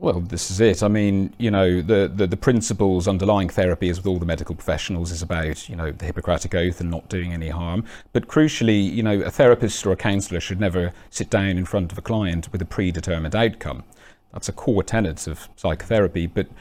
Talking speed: 220 wpm